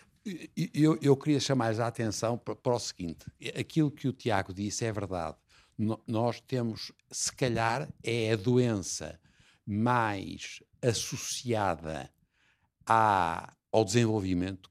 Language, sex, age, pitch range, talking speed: Portuguese, male, 60-79, 105-125 Hz, 115 wpm